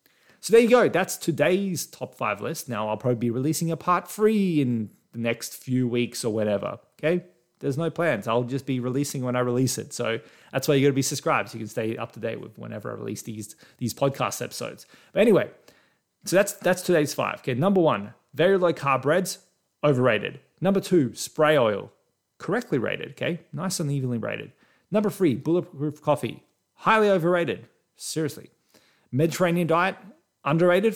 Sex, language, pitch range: male, English, 120-170 Hz